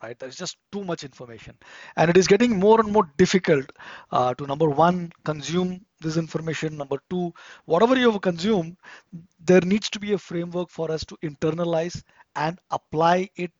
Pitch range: 155-195 Hz